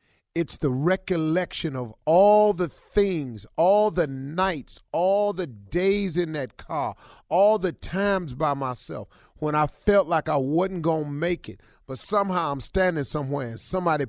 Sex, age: male, 40-59